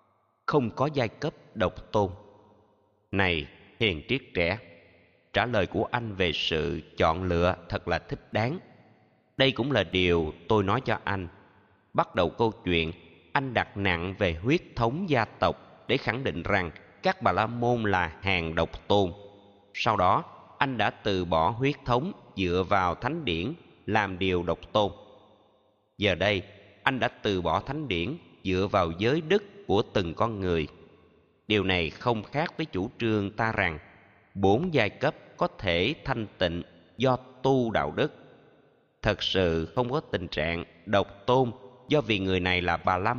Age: 20-39